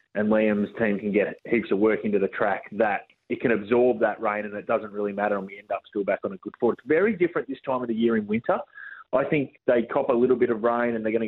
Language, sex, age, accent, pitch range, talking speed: English, male, 30-49, Australian, 105-130 Hz, 280 wpm